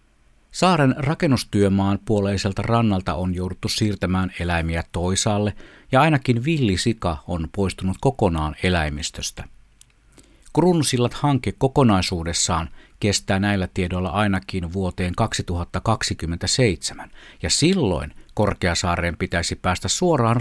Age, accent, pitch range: 50-69, native, 85-115 Hz